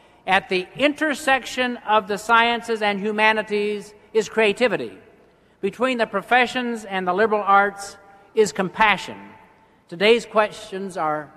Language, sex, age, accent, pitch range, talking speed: English, male, 60-79, American, 185-225 Hz, 115 wpm